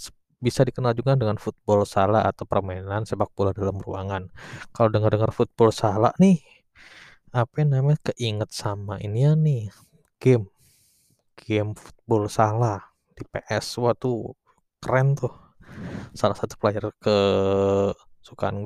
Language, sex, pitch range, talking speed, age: Indonesian, male, 100-120 Hz, 125 wpm, 20-39